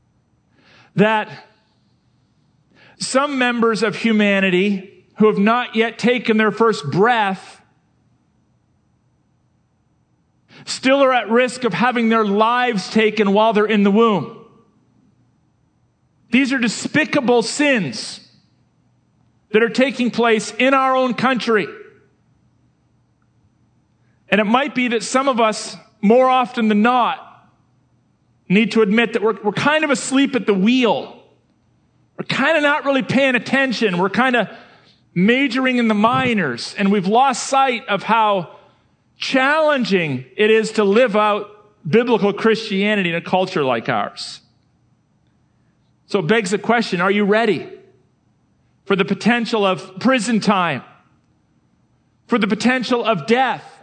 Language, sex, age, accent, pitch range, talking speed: English, male, 40-59, American, 205-250 Hz, 130 wpm